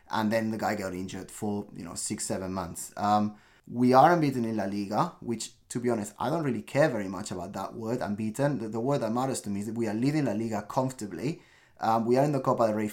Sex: male